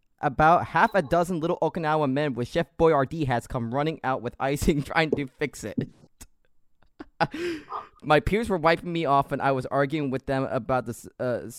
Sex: male